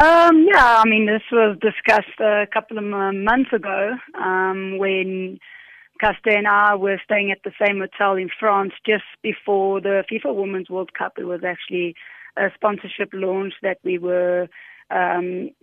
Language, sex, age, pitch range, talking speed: English, female, 20-39, 190-220 Hz, 160 wpm